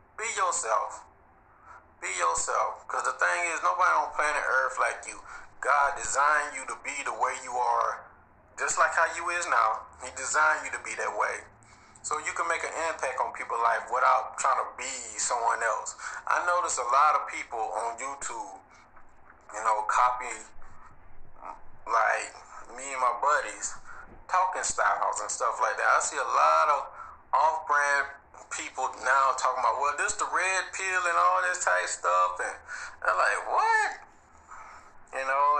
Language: English